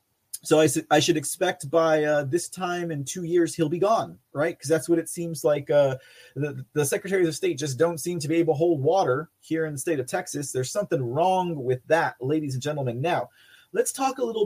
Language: English